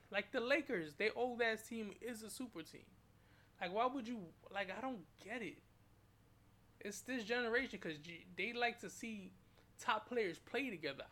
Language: English